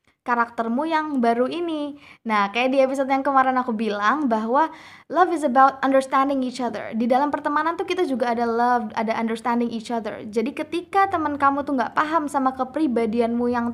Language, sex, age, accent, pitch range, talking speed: Indonesian, female, 20-39, native, 235-290 Hz, 180 wpm